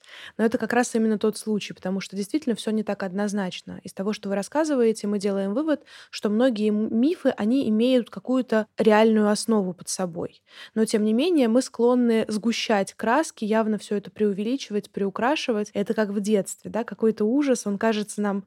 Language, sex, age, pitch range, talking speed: Russian, female, 20-39, 200-235 Hz, 180 wpm